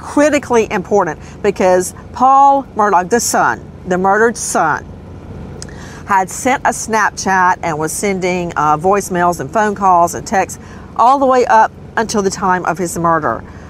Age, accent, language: 50-69, American, English